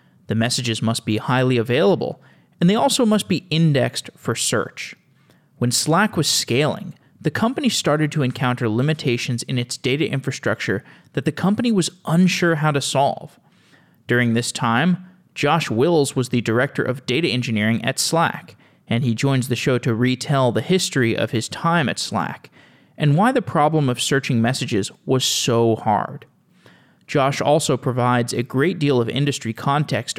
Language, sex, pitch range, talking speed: English, male, 120-160 Hz, 165 wpm